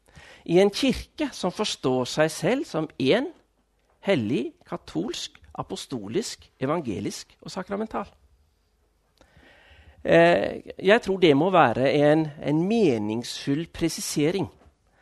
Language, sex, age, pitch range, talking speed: Danish, male, 50-69, 135-210 Hz, 95 wpm